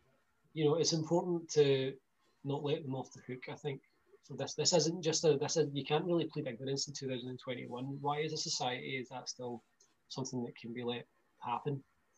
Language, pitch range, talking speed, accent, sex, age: English, 130-155 Hz, 200 wpm, British, male, 20-39